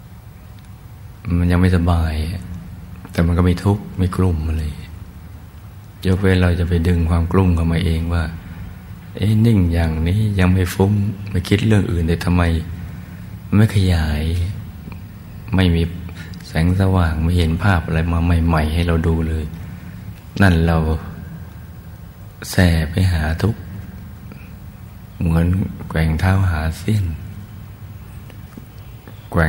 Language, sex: Thai, male